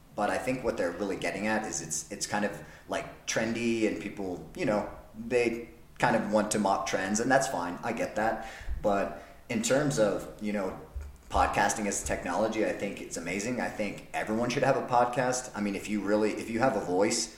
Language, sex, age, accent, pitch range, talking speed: English, male, 30-49, American, 85-105 Hz, 220 wpm